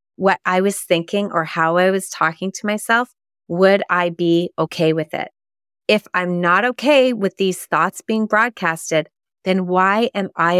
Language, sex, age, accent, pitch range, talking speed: English, female, 30-49, American, 170-215 Hz, 170 wpm